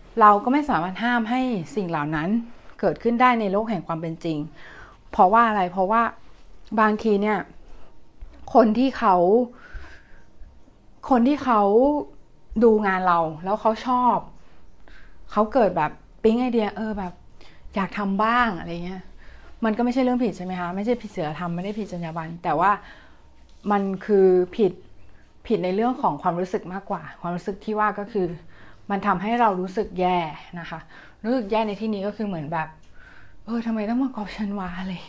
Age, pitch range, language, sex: 20-39, 175-225 Hz, Thai, female